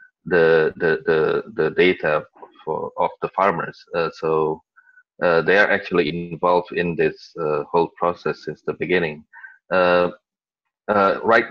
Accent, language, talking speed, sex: Malaysian, English, 140 wpm, male